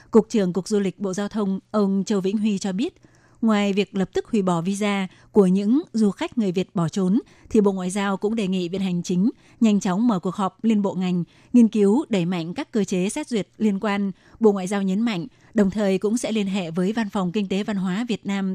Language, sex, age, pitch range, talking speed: Vietnamese, female, 20-39, 185-215 Hz, 250 wpm